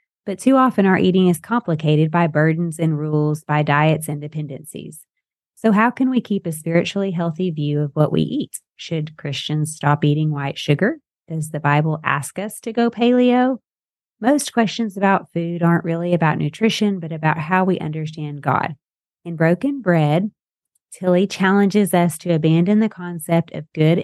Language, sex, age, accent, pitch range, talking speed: English, female, 30-49, American, 155-195 Hz, 170 wpm